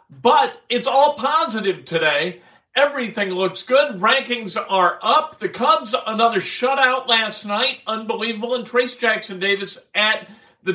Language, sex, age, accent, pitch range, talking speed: English, male, 50-69, American, 190-240 Hz, 135 wpm